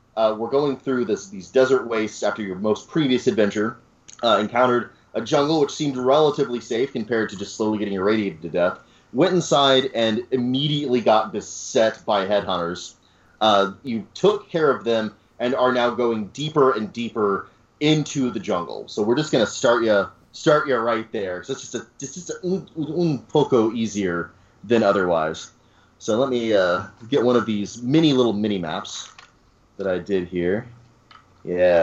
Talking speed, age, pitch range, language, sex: 175 wpm, 30-49, 100-130 Hz, English, male